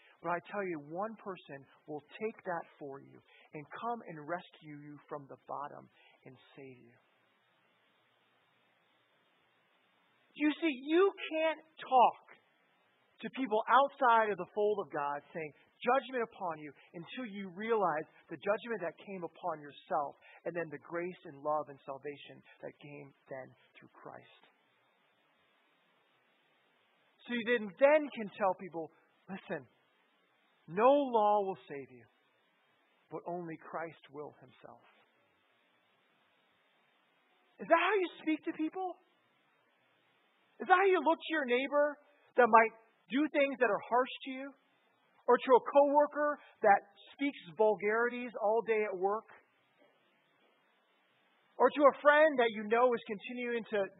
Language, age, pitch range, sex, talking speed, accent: English, 40-59, 170-270 Hz, male, 140 wpm, American